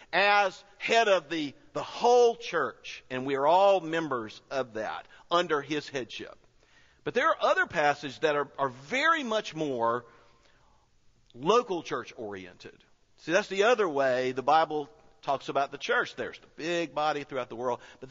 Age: 50-69